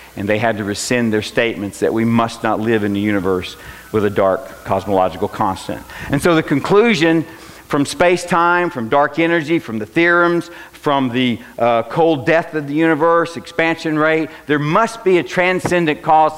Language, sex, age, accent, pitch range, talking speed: English, male, 50-69, American, 120-175 Hz, 175 wpm